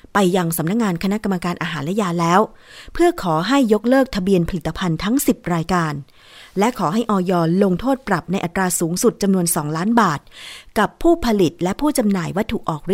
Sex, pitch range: female, 165-220 Hz